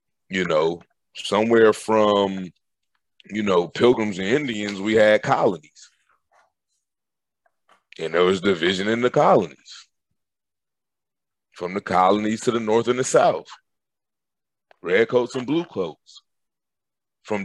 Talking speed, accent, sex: 115 wpm, American, male